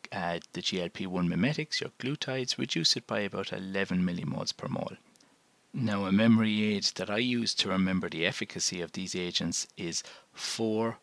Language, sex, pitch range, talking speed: English, male, 90-115 Hz, 165 wpm